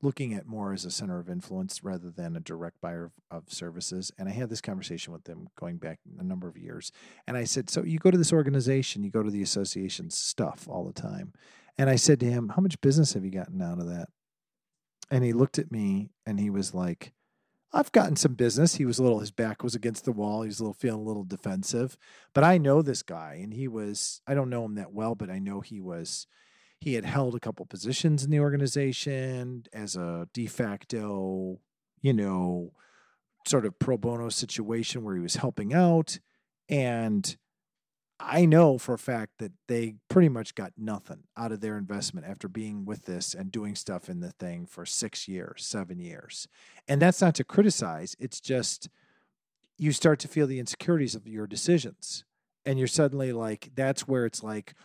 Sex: male